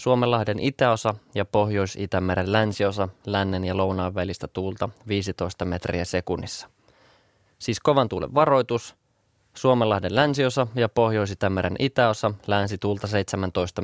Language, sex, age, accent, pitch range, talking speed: Finnish, male, 20-39, native, 95-115 Hz, 110 wpm